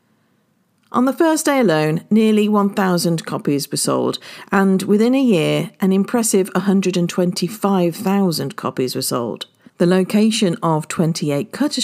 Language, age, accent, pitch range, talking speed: English, 50-69, British, 160-215 Hz, 125 wpm